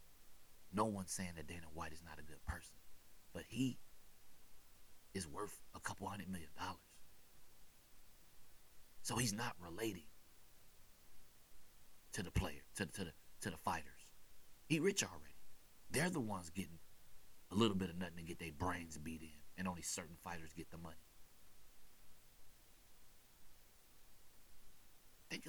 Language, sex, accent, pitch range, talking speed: English, male, American, 80-100 Hz, 135 wpm